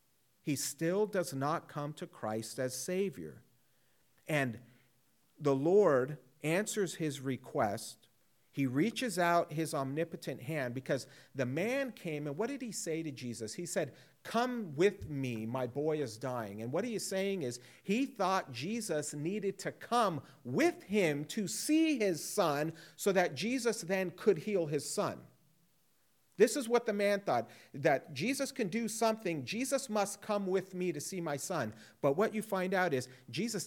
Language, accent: English, American